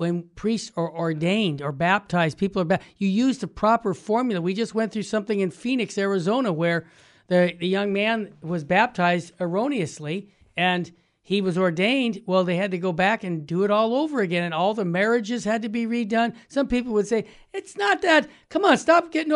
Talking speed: 200 wpm